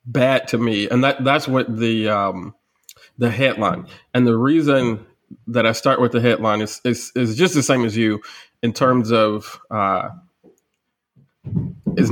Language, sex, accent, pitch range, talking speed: English, male, American, 115-135 Hz, 165 wpm